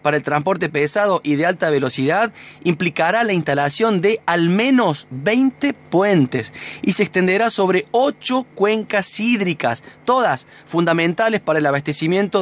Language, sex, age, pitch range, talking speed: Spanish, male, 30-49, 140-190 Hz, 135 wpm